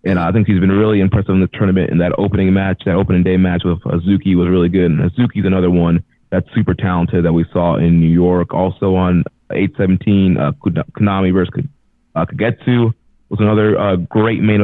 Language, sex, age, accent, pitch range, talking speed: English, male, 20-39, American, 90-100 Hz, 205 wpm